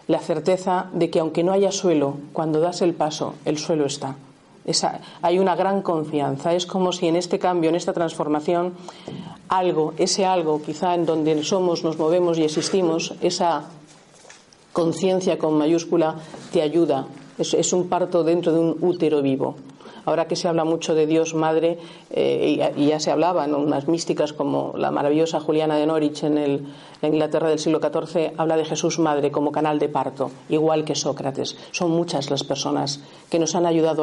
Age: 40-59